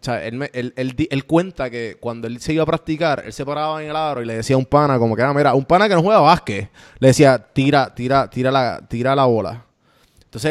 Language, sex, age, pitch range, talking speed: Spanish, male, 20-39, 120-155 Hz, 270 wpm